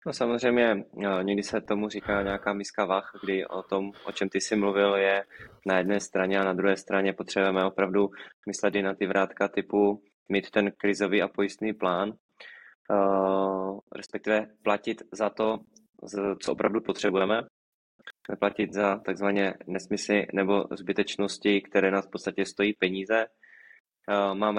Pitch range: 95-100 Hz